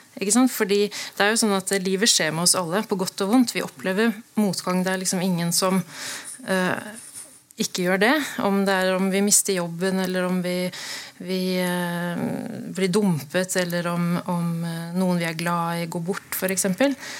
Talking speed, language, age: 190 wpm, English, 20-39